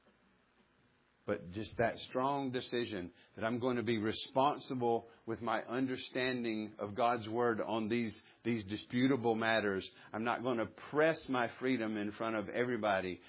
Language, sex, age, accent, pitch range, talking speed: English, male, 50-69, American, 95-120 Hz, 150 wpm